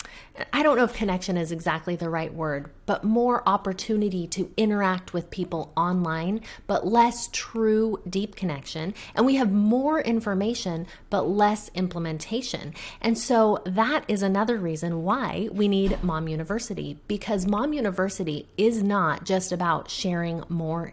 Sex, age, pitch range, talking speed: female, 30-49, 165-215 Hz, 145 wpm